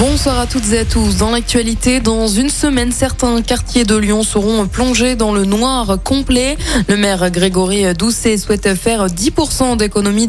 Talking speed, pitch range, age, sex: 170 wpm, 195-245 Hz, 20-39, female